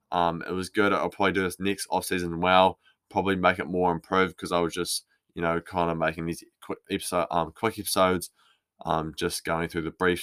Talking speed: 215 wpm